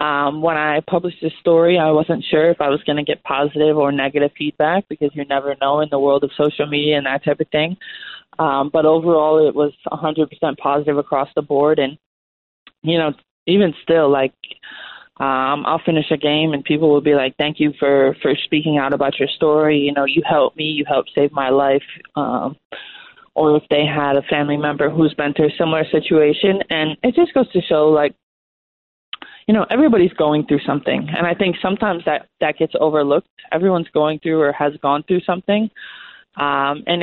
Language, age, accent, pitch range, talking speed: English, 20-39, American, 145-165 Hz, 200 wpm